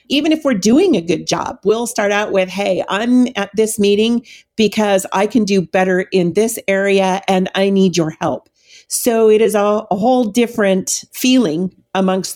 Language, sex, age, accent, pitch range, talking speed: English, female, 50-69, American, 180-220 Hz, 180 wpm